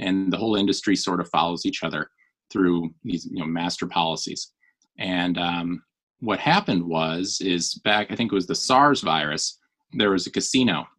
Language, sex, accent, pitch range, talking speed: English, male, American, 85-100 Hz, 180 wpm